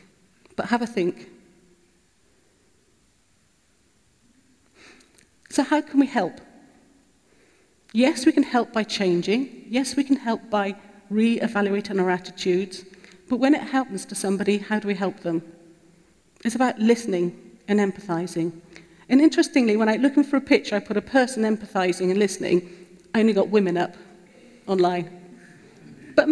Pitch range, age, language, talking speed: 185-245 Hz, 40-59, English, 140 wpm